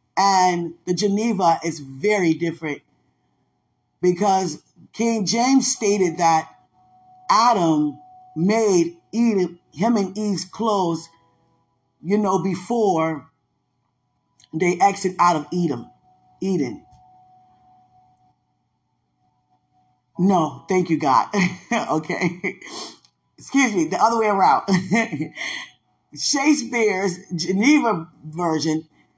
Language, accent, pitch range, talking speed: English, American, 150-200 Hz, 80 wpm